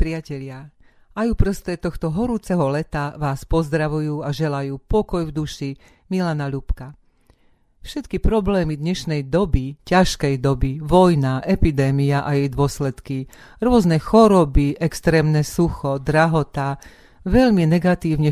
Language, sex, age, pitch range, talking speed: Slovak, female, 40-59, 140-170 Hz, 110 wpm